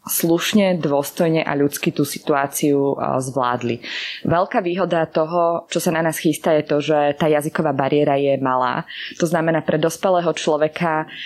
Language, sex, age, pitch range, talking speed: Slovak, female, 20-39, 145-170 Hz, 150 wpm